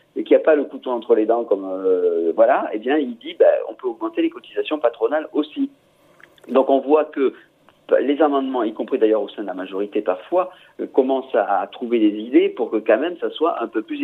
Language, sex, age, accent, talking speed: French, male, 50-69, French, 240 wpm